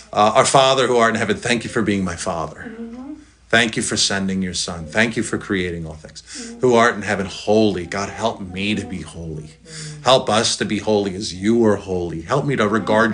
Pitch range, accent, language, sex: 105-150 Hz, American, English, male